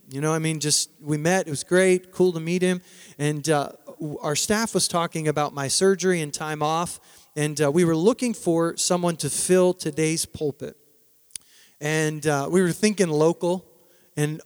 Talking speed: 185 wpm